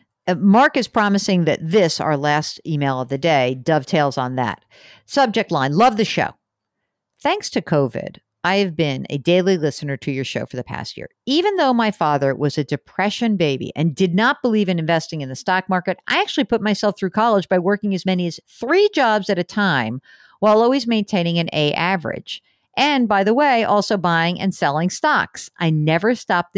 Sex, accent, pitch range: female, American, 145-205 Hz